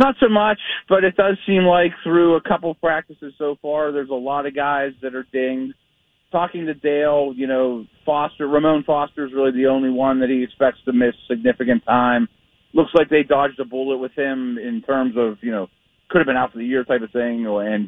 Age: 40-59